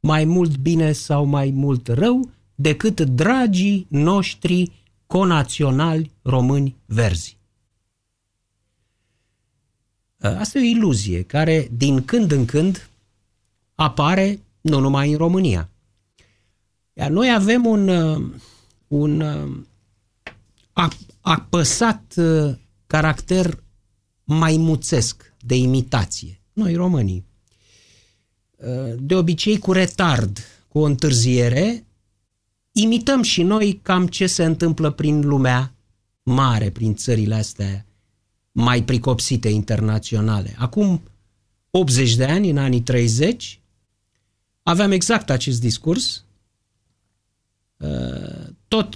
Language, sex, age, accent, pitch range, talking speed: Romanian, male, 50-69, native, 105-165 Hz, 90 wpm